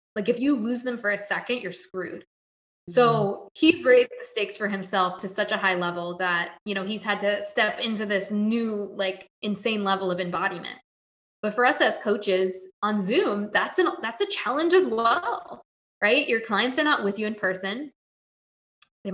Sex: female